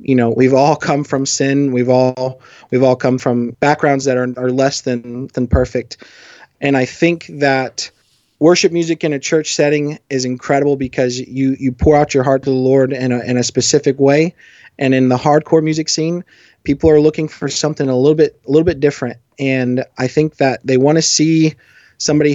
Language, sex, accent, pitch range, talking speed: English, male, American, 125-145 Hz, 205 wpm